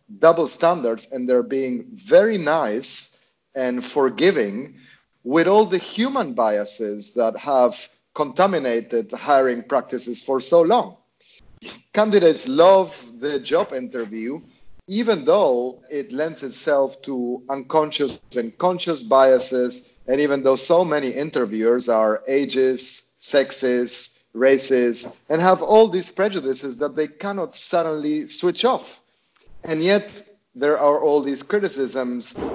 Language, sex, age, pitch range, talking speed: English, male, 40-59, 125-170 Hz, 120 wpm